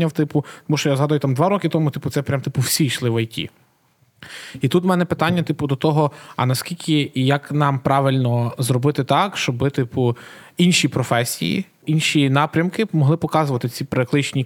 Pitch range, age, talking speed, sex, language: 125-150 Hz, 20-39, 185 wpm, male, Ukrainian